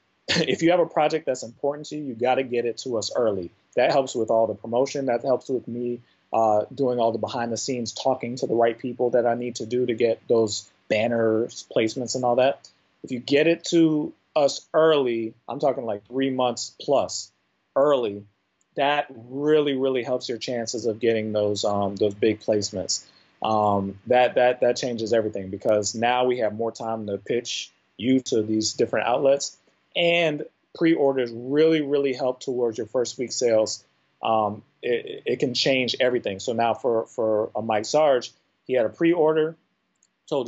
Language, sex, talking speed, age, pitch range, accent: English, male, 185 wpm, 30-49, 110-135 Hz, American